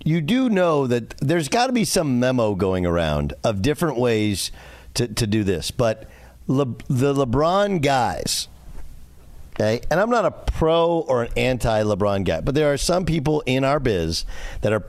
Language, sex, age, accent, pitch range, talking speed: English, male, 50-69, American, 100-145 Hz, 175 wpm